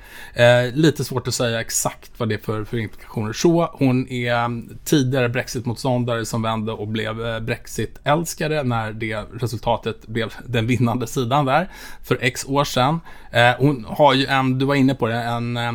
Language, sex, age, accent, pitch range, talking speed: Swedish, male, 20-39, Norwegian, 110-130 Hz, 180 wpm